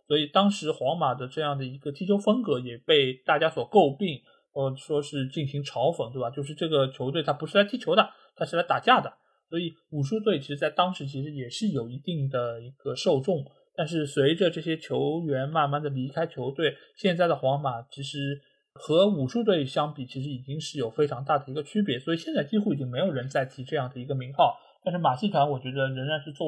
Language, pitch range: Chinese, 135-185 Hz